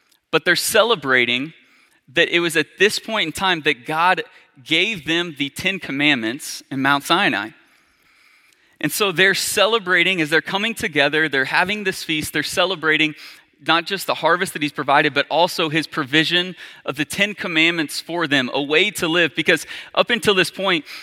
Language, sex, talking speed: English, male, 175 wpm